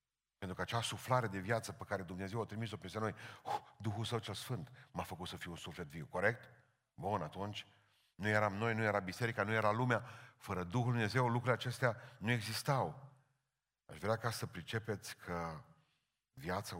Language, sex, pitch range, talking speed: Romanian, male, 100-125 Hz, 180 wpm